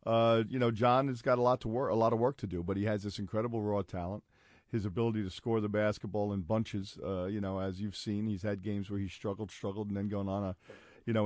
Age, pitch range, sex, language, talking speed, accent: 50-69, 100-110 Hz, male, English, 270 wpm, American